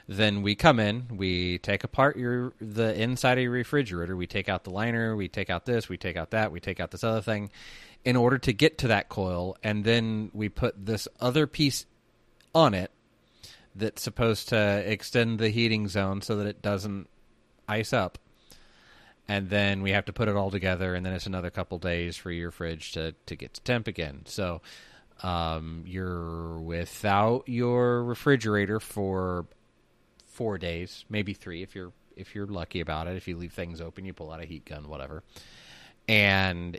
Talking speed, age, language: 190 wpm, 30-49, English